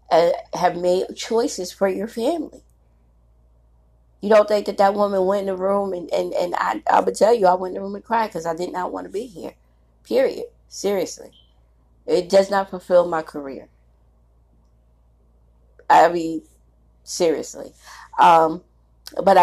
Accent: American